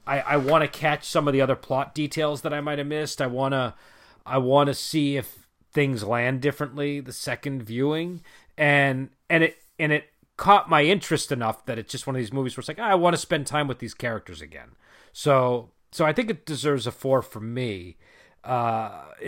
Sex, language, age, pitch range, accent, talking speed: male, English, 40-59, 125-155 Hz, American, 215 wpm